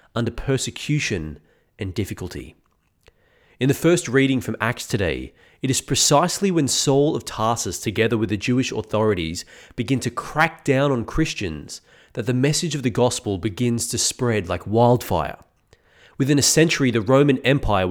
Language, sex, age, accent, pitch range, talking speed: English, male, 30-49, Australian, 105-145 Hz, 155 wpm